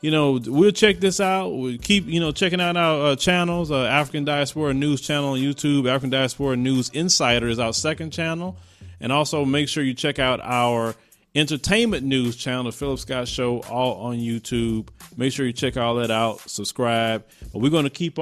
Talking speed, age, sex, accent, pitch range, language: 200 wpm, 30-49, male, American, 125-190 Hz, English